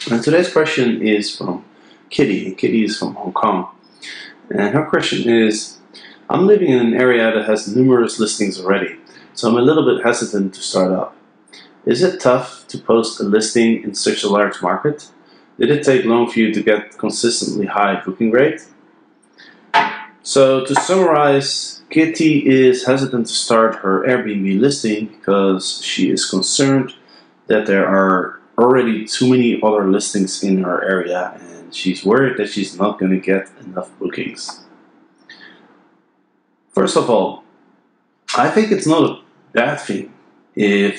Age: 30-49